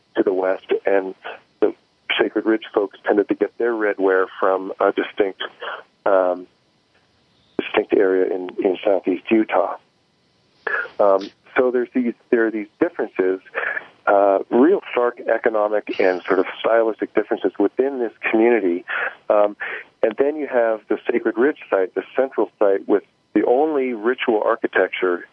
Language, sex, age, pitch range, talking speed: English, male, 40-59, 95-120 Hz, 140 wpm